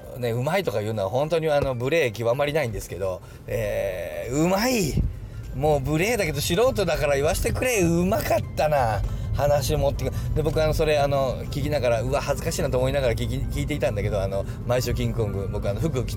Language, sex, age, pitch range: Japanese, male, 40-59, 115-145 Hz